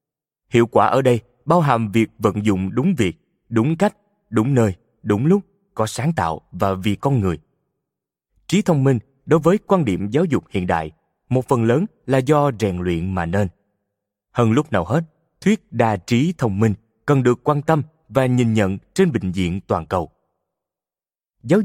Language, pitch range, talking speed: Vietnamese, 105-155 Hz, 185 wpm